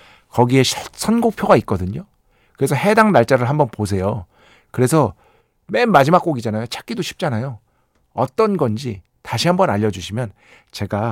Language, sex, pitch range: Korean, male, 110-160 Hz